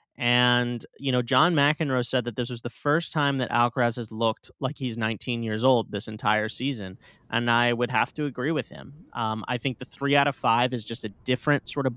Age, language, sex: 30-49, English, male